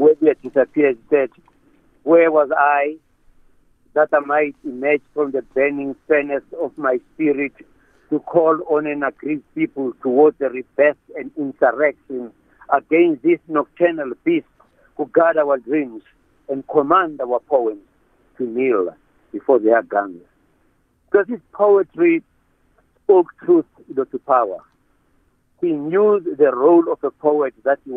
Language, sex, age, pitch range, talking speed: English, male, 60-79, 140-175 Hz, 135 wpm